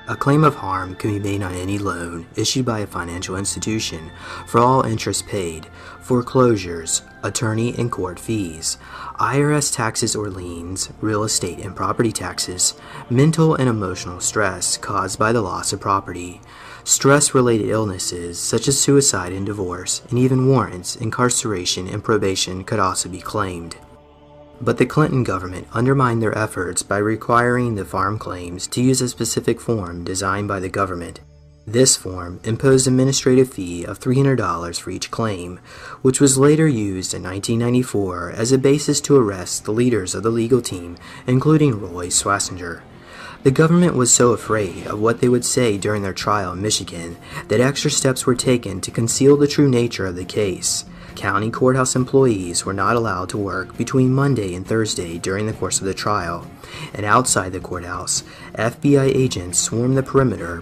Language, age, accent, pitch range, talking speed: English, 30-49, American, 90-125 Hz, 165 wpm